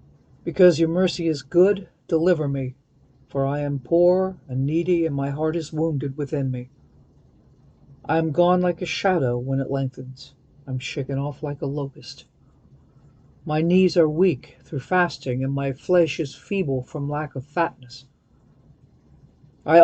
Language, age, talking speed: English, 50-69, 155 wpm